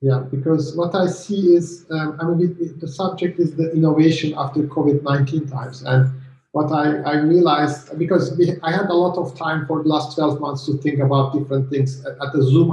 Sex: male